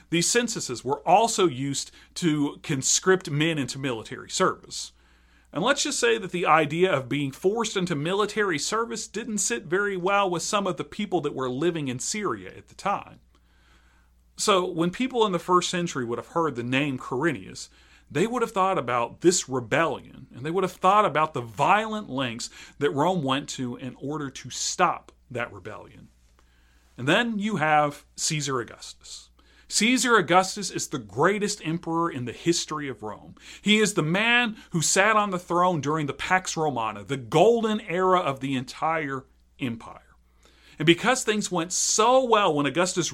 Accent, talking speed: American, 175 wpm